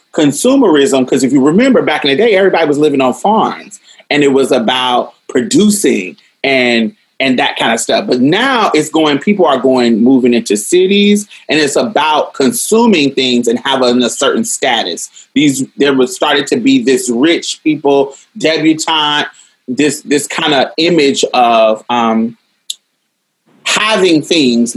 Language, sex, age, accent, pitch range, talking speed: English, male, 30-49, American, 130-210 Hz, 155 wpm